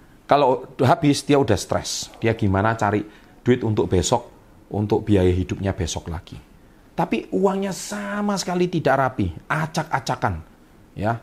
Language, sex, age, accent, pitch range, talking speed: Indonesian, male, 40-59, native, 100-140 Hz, 130 wpm